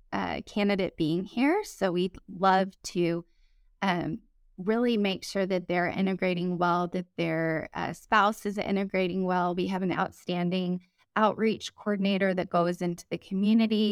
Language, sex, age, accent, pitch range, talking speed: English, female, 20-39, American, 175-200 Hz, 145 wpm